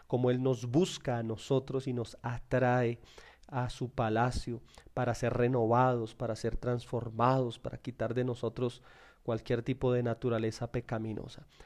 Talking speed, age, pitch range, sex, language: 140 wpm, 30-49, 120-150 Hz, male, Spanish